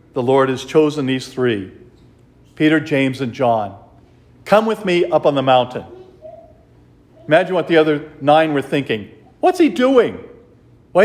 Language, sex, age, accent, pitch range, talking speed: English, male, 50-69, American, 120-180 Hz, 150 wpm